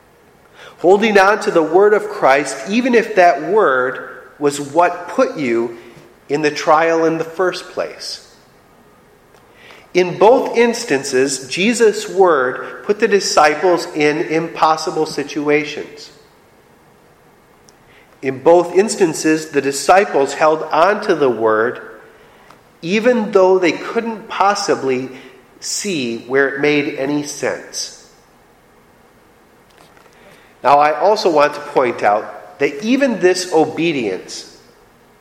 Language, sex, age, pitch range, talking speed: English, male, 40-59, 150-220 Hz, 110 wpm